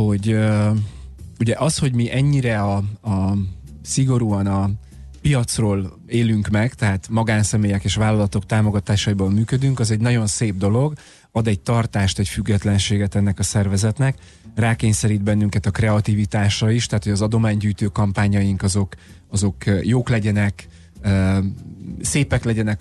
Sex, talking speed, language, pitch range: male, 120 wpm, Hungarian, 100-115 Hz